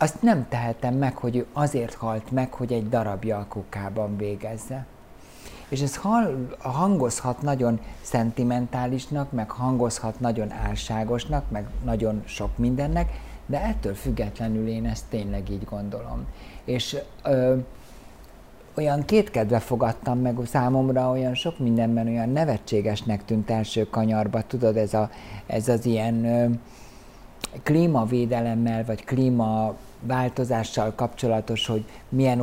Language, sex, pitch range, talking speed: Hungarian, male, 110-125 Hz, 120 wpm